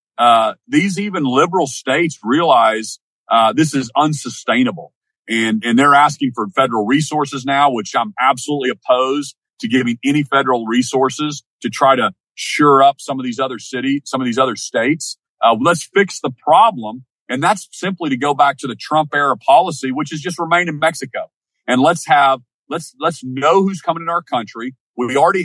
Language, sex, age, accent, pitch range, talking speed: English, male, 40-59, American, 130-175 Hz, 180 wpm